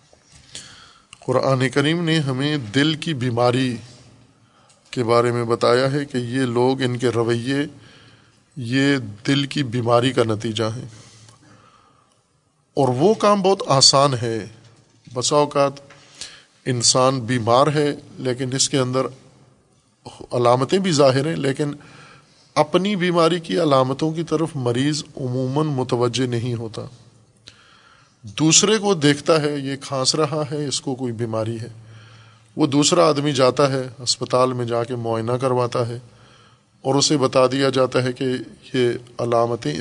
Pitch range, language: 120-140 Hz, Urdu